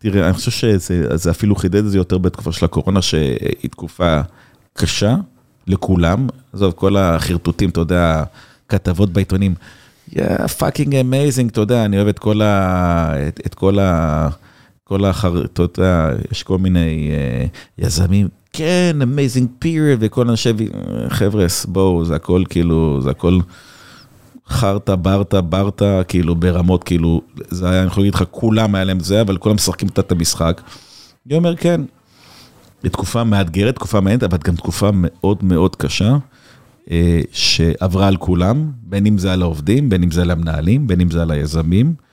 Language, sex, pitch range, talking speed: Hebrew, male, 85-105 Hz, 155 wpm